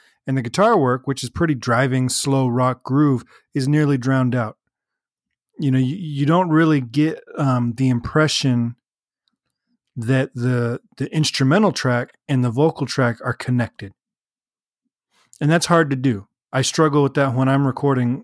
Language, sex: English, male